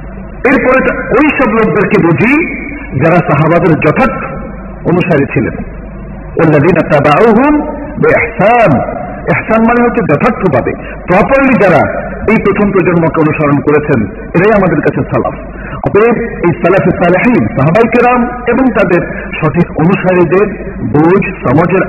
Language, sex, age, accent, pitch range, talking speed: Bengali, male, 50-69, native, 155-220 Hz, 95 wpm